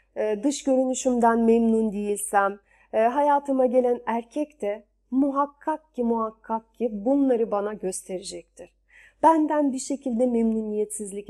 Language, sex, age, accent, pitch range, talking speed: Turkish, female, 40-59, native, 215-270 Hz, 100 wpm